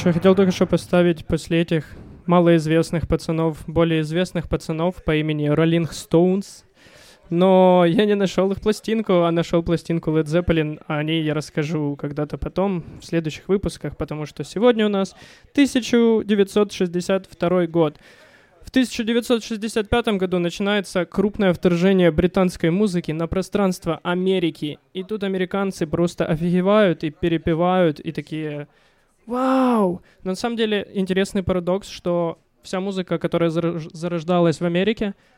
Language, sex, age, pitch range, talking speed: Ukrainian, male, 20-39, 165-195 Hz, 125 wpm